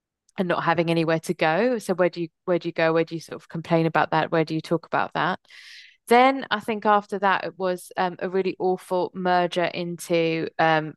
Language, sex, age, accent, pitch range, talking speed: English, female, 20-39, British, 170-195 Hz, 230 wpm